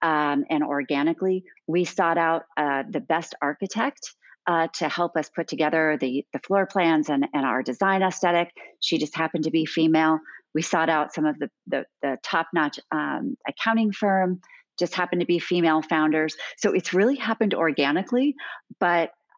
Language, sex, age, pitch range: English, female, 40-59, 155-185 Hz